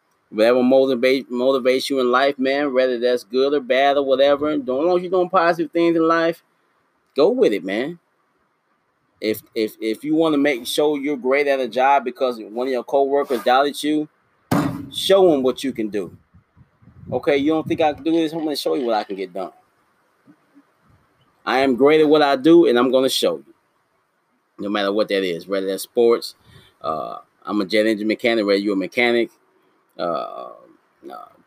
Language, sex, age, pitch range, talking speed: English, male, 20-39, 110-145 Hz, 195 wpm